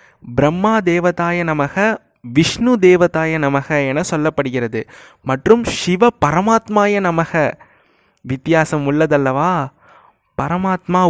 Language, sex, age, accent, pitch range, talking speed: Tamil, male, 20-39, native, 150-205 Hz, 80 wpm